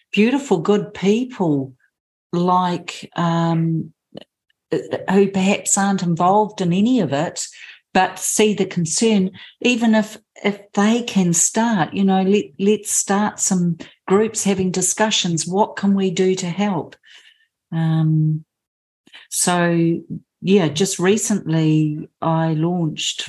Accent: Australian